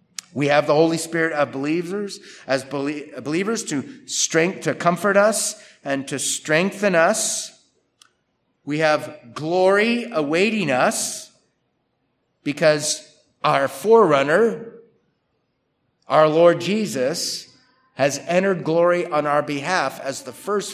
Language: English